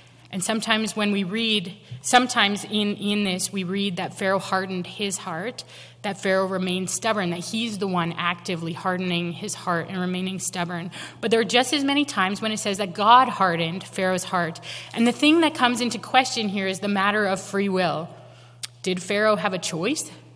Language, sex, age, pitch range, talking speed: English, female, 20-39, 180-220 Hz, 190 wpm